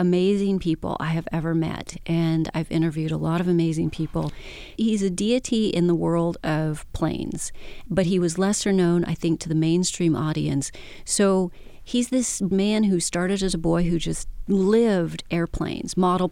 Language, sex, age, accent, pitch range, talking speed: English, female, 40-59, American, 165-190 Hz, 175 wpm